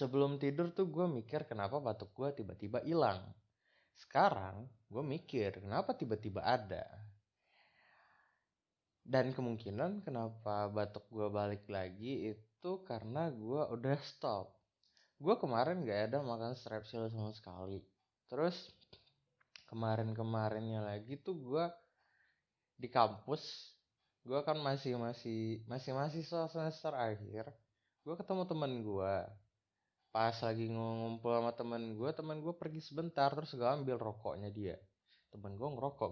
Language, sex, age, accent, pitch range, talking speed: Indonesian, male, 20-39, native, 105-140 Hz, 120 wpm